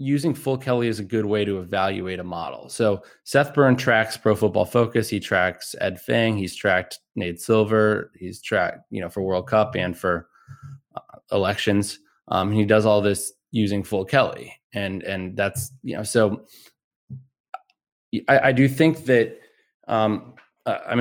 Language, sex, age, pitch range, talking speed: English, male, 20-39, 95-125 Hz, 170 wpm